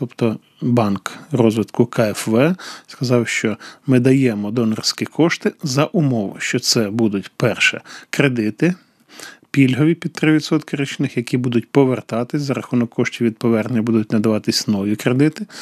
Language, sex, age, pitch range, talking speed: English, male, 20-39, 115-140 Hz, 125 wpm